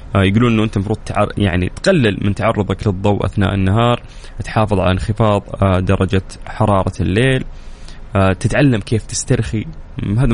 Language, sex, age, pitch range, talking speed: Arabic, male, 20-39, 95-120 Hz, 130 wpm